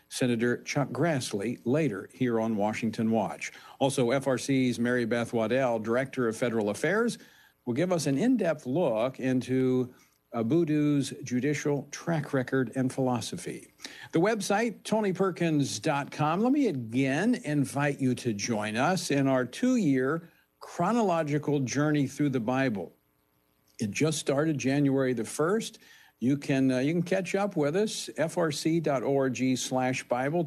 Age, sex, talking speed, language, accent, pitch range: 60-79, male, 135 wpm, English, American, 130-160 Hz